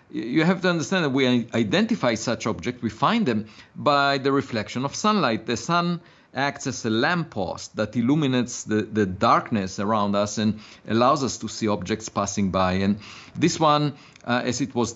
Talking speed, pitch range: 180 wpm, 110-145 Hz